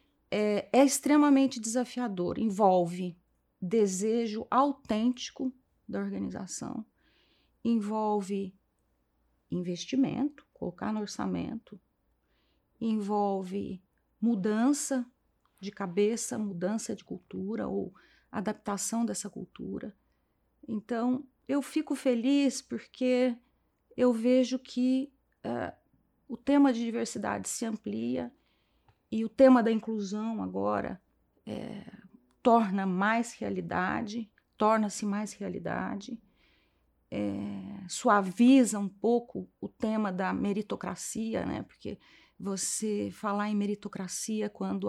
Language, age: Portuguese, 40-59